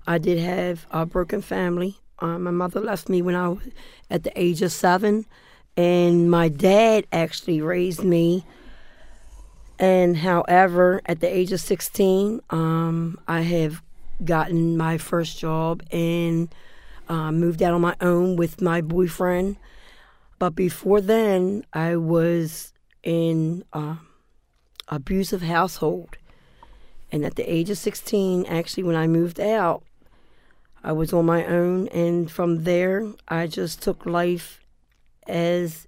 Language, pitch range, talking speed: English, 165-180 Hz, 135 wpm